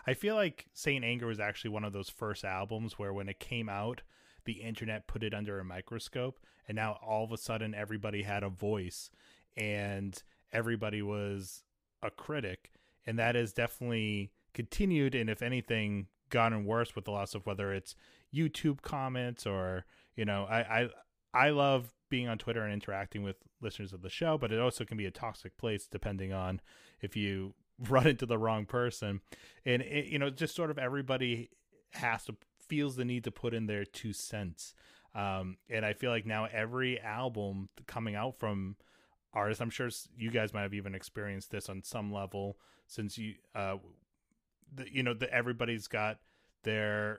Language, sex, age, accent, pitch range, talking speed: English, male, 30-49, American, 100-120 Hz, 180 wpm